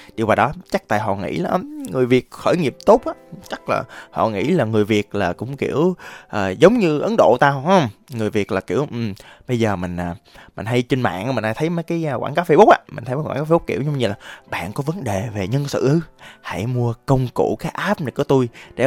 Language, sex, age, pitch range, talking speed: Vietnamese, male, 20-39, 110-160 Hz, 265 wpm